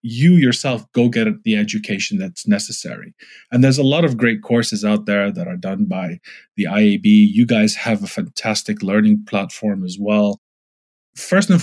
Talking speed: 175 wpm